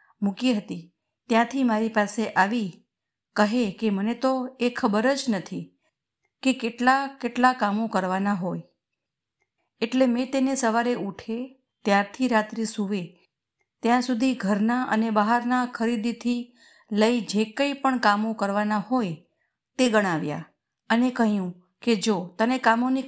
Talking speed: 125 wpm